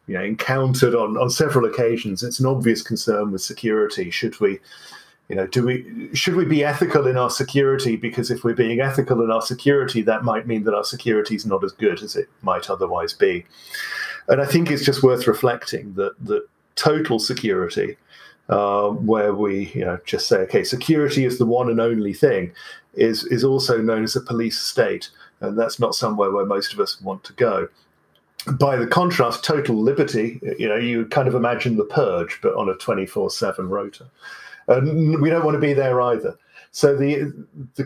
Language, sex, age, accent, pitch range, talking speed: English, male, 40-59, British, 115-150 Hz, 195 wpm